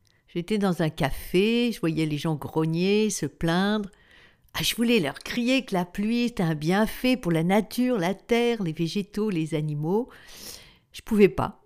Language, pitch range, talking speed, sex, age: French, 165-205 Hz, 175 wpm, female, 60-79